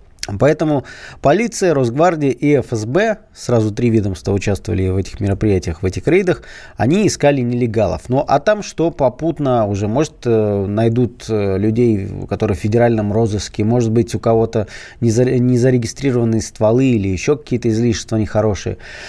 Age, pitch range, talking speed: 20-39, 105-140 Hz, 130 wpm